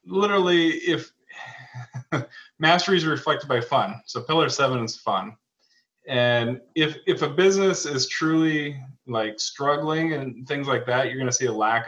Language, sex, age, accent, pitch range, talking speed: English, male, 20-39, American, 115-150 Hz, 155 wpm